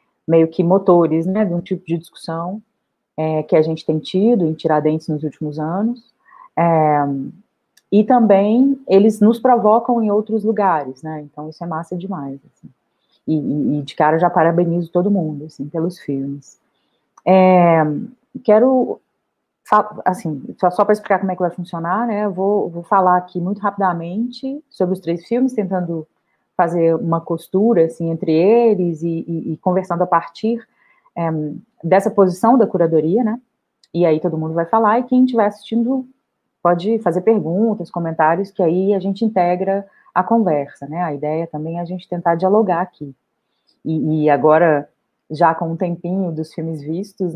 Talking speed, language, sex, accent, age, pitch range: 160 wpm, Portuguese, female, Brazilian, 30-49, 160-210 Hz